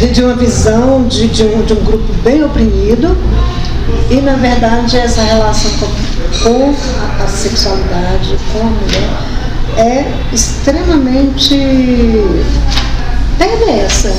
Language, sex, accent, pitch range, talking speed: Portuguese, female, Brazilian, 220-275 Hz, 110 wpm